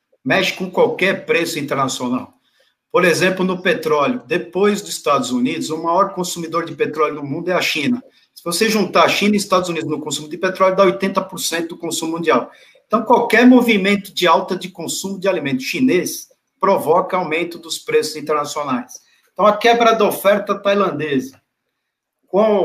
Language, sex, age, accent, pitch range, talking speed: Portuguese, male, 50-69, Brazilian, 165-215 Hz, 165 wpm